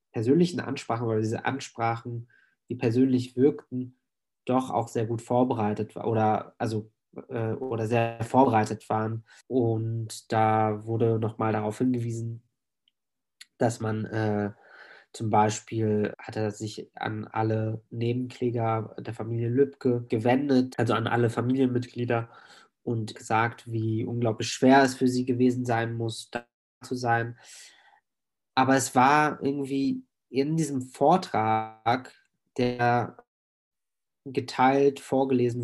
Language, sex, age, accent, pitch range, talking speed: German, male, 20-39, German, 115-130 Hz, 115 wpm